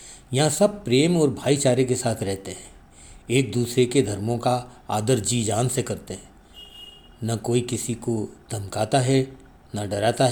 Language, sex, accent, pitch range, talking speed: Hindi, male, native, 110-140 Hz, 165 wpm